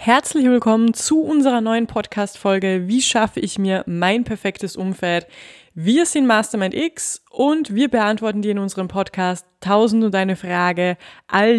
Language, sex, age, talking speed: German, female, 20-39, 150 wpm